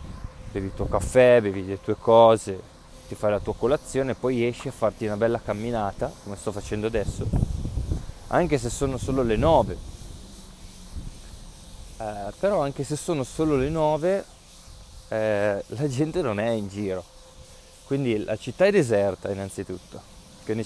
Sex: male